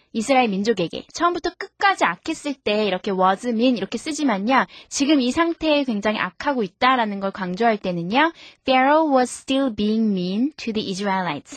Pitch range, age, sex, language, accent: 210-285 Hz, 20-39, female, Korean, native